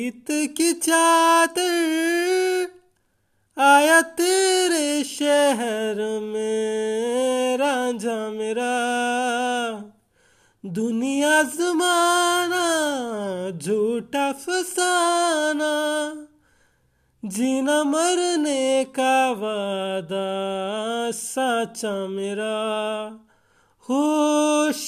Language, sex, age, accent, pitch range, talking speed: Hindi, male, 20-39, native, 220-300 Hz, 40 wpm